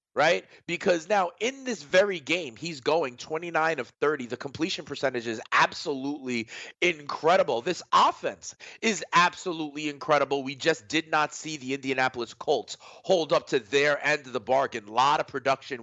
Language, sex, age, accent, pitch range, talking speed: English, male, 30-49, American, 120-155 Hz, 165 wpm